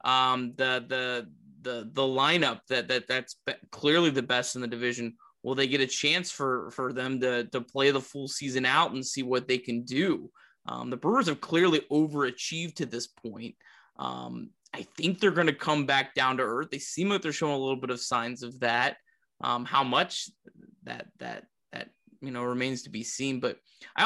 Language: English